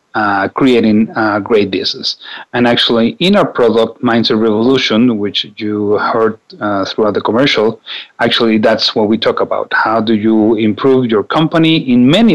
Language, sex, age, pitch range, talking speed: English, male, 40-59, 110-125 Hz, 160 wpm